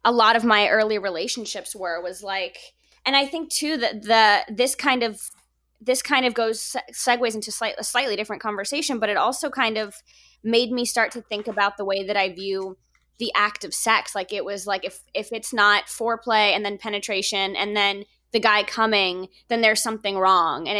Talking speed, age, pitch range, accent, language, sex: 205 wpm, 20-39, 195-225 Hz, American, English, female